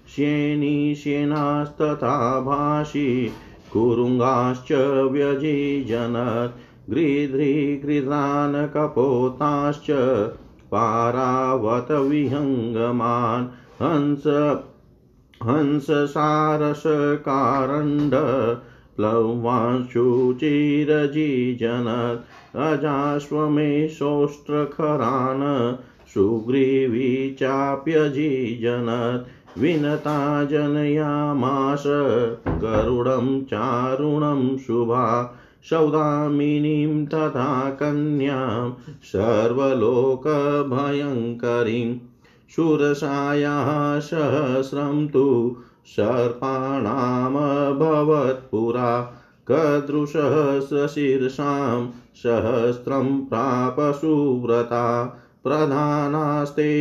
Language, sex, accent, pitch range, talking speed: Hindi, male, native, 120-145 Hz, 35 wpm